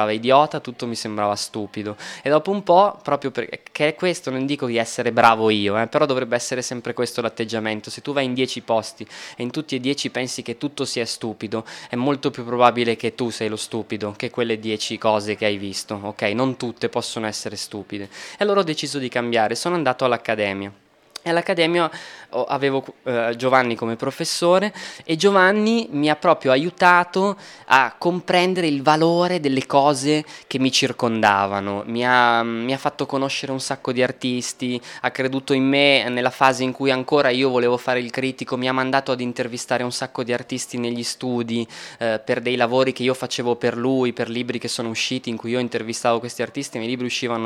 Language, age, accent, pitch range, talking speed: German, 20-39, Italian, 115-135 Hz, 190 wpm